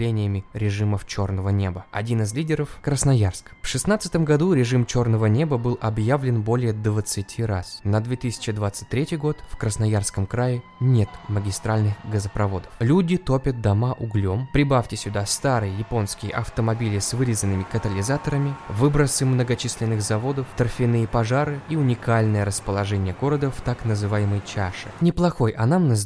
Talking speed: 125 wpm